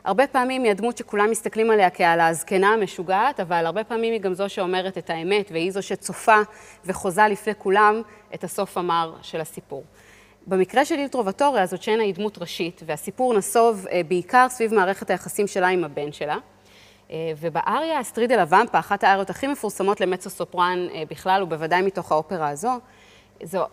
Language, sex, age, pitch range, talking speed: Hebrew, female, 30-49, 175-215 Hz, 160 wpm